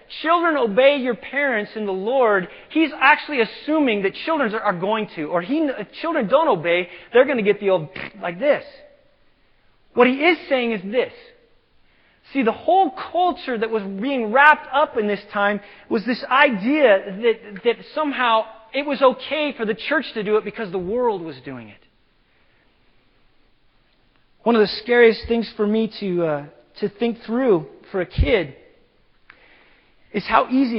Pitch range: 205-285 Hz